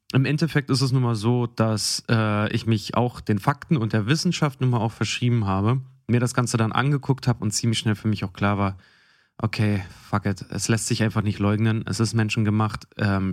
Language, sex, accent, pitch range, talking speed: German, male, German, 105-135 Hz, 220 wpm